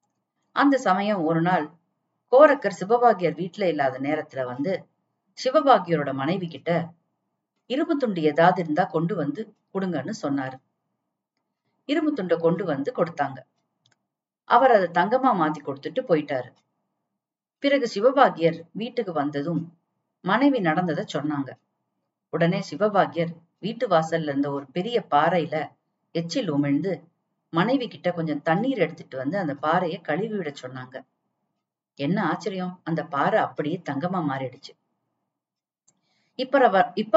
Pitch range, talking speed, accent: 155-210 Hz, 105 wpm, native